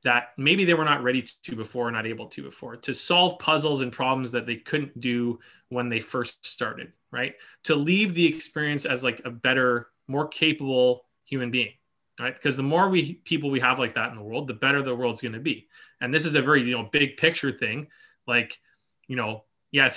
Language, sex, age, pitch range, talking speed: English, male, 20-39, 125-145 Hz, 215 wpm